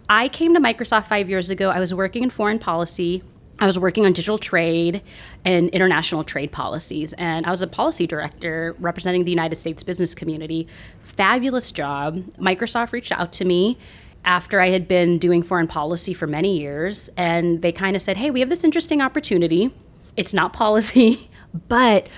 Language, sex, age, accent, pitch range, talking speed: English, female, 30-49, American, 170-225 Hz, 180 wpm